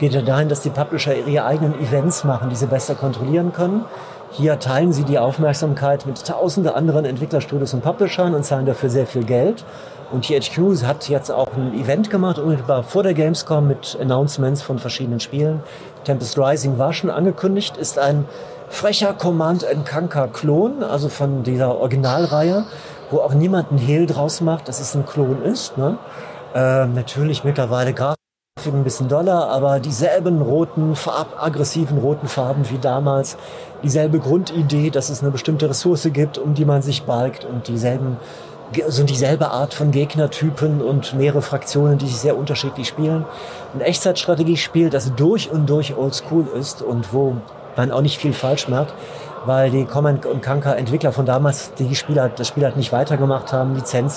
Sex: male